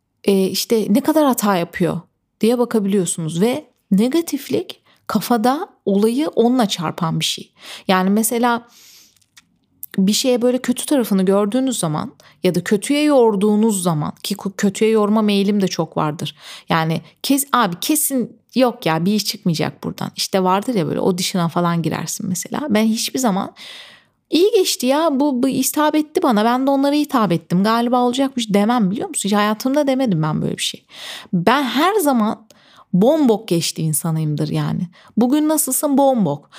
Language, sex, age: Turkish, female, 30-49